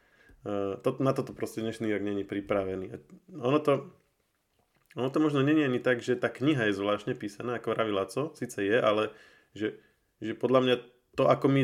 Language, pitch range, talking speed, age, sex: Slovak, 100-115 Hz, 180 wpm, 20-39, male